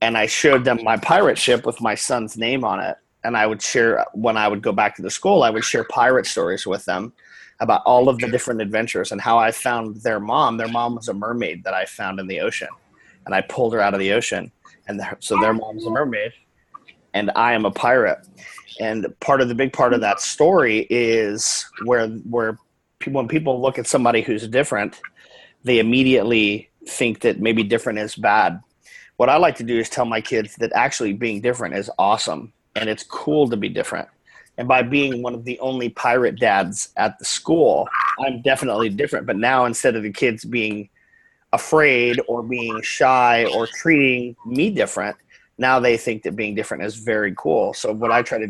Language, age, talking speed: English, 30-49, 205 wpm